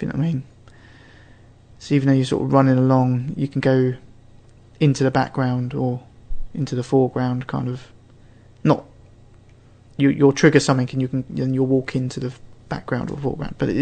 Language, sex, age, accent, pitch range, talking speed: English, male, 20-39, British, 120-140 Hz, 185 wpm